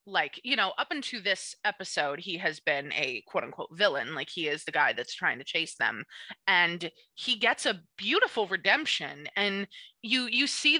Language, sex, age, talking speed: English, female, 20-39, 190 wpm